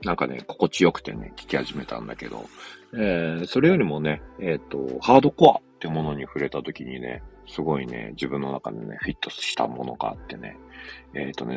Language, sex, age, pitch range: Japanese, male, 40-59, 65-75 Hz